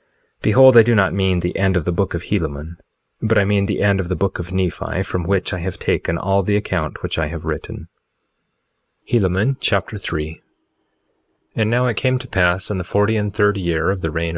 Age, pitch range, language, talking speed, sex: 30-49, 90-105 Hz, English, 210 wpm, male